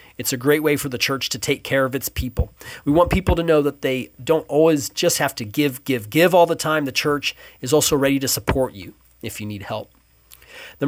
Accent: American